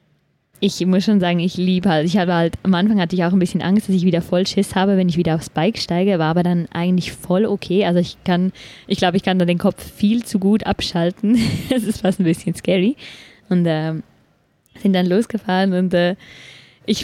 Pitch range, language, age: 180-220 Hz, English, 20-39